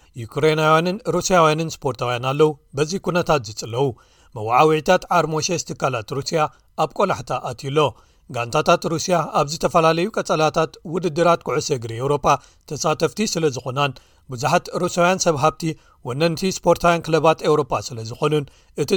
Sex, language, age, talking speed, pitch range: male, Amharic, 40-59, 150 wpm, 140-170 Hz